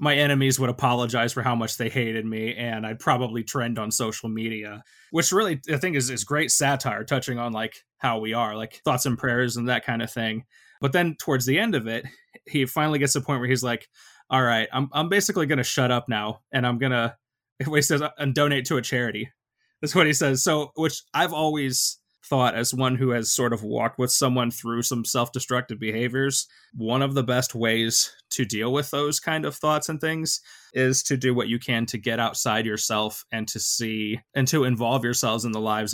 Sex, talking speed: male, 220 wpm